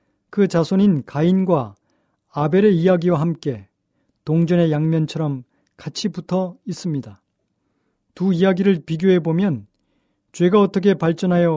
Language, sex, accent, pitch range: Korean, male, native, 145-185 Hz